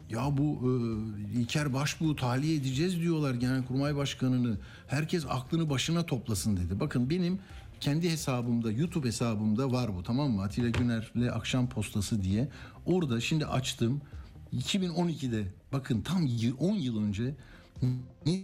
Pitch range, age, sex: 115-145 Hz, 60-79, male